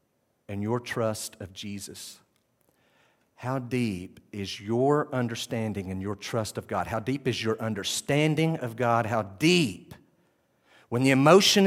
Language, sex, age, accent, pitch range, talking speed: English, male, 50-69, American, 120-185 Hz, 140 wpm